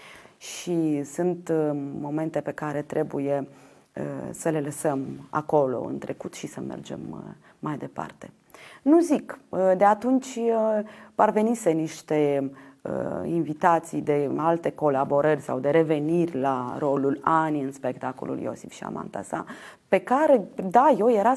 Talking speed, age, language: 120 wpm, 30-49, Romanian